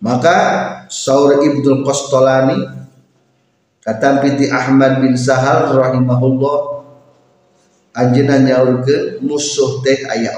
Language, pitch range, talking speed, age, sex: Indonesian, 125-190 Hz, 85 wpm, 50-69, male